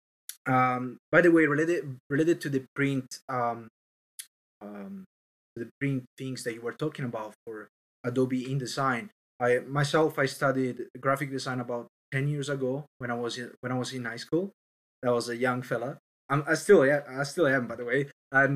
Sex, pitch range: male, 125-150 Hz